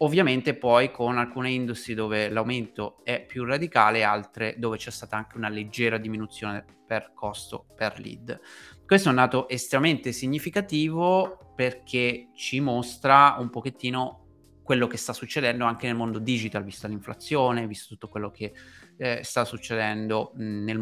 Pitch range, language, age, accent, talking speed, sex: 110-135 Hz, Italian, 30-49, native, 145 wpm, male